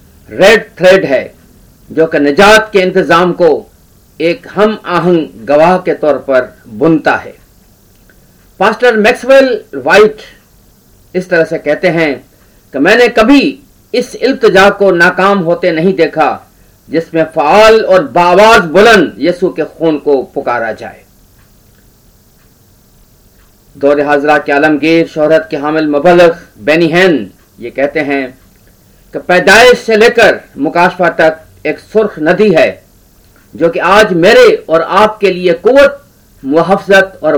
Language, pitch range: Hindi, 140-195 Hz